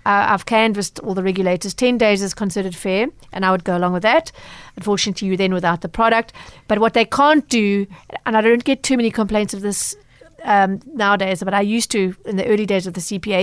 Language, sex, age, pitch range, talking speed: English, female, 40-59, 195-230 Hz, 230 wpm